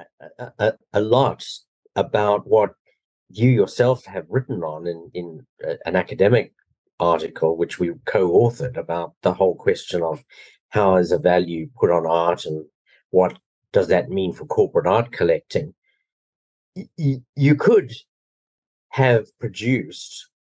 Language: English